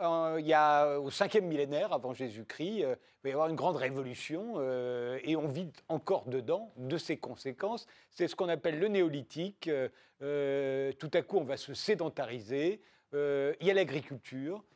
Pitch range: 140-180 Hz